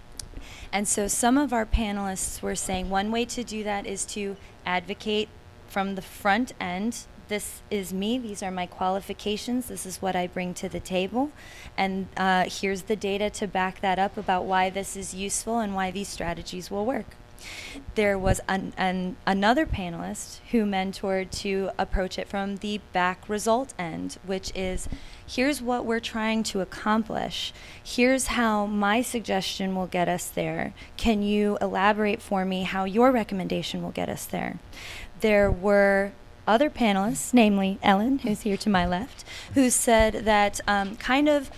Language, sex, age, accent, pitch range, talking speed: English, female, 20-39, American, 190-230 Hz, 165 wpm